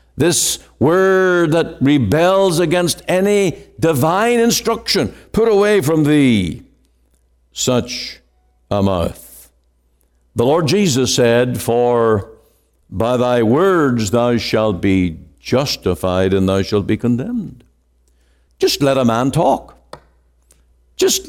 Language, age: English, 60-79